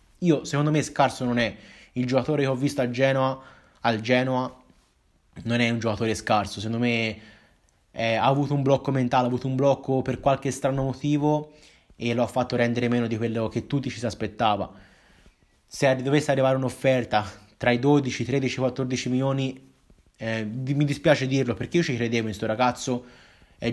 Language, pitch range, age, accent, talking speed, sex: Italian, 120-145 Hz, 20-39, native, 185 wpm, male